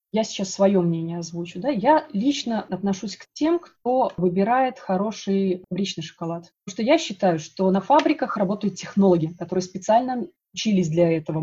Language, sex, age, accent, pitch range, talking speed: Russian, female, 20-39, native, 180-220 Hz, 160 wpm